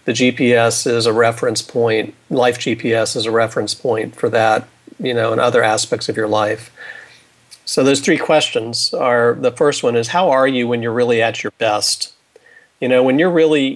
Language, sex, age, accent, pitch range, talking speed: English, male, 40-59, American, 120-135 Hz, 195 wpm